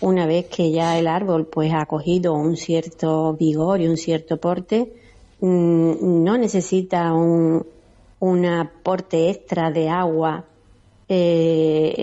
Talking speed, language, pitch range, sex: 120 wpm, Spanish, 165-205 Hz, female